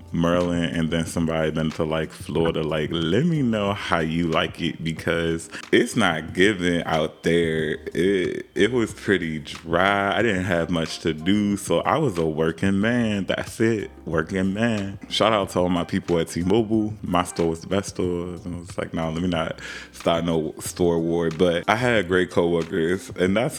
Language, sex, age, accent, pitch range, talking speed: English, male, 20-39, American, 85-100 Hz, 195 wpm